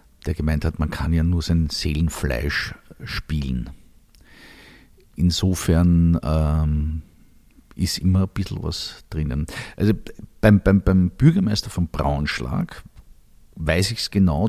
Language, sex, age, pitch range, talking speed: German, male, 50-69, 80-100 Hz, 120 wpm